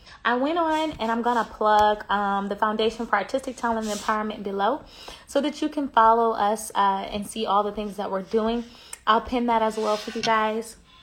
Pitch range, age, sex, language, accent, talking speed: 200-230 Hz, 20-39, female, English, American, 220 wpm